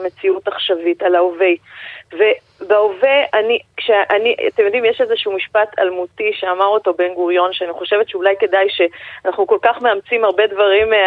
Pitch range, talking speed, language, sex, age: 210-285 Hz, 145 wpm, Hebrew, female, 30-49